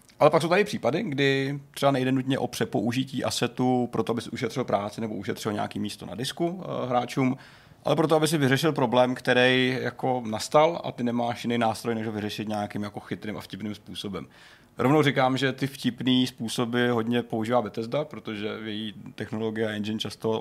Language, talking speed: Czech, 185 wpm